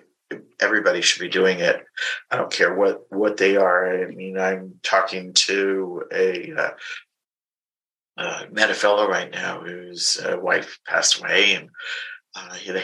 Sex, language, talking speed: male, English, 155 wpm